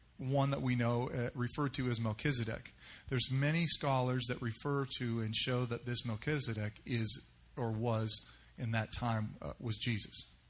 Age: 40-59